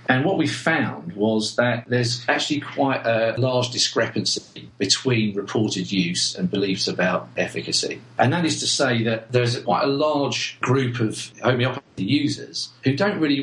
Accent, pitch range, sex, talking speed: British, 110-130 Hz, male, 160 wpm